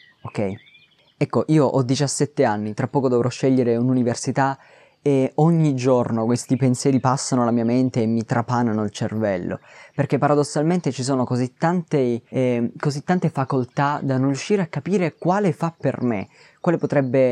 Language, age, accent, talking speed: Italian, 20-39, native, 160 wpm